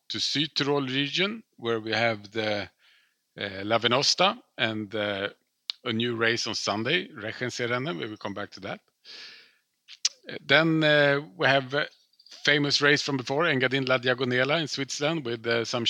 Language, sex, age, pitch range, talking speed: English, male, 40-59, 110-130 Hz, 160 wpm